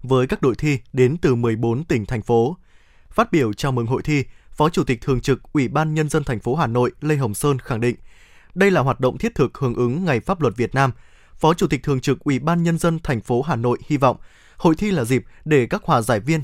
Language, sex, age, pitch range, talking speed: Vietnamese, male, 20-39, 125-170 Hz, 265 wpm